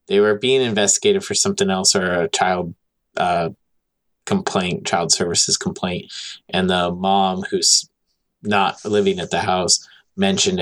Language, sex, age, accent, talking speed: English, male, 20-39, American, 140 wpm